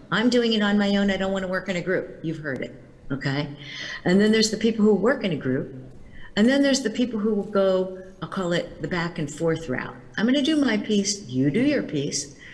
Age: 50-69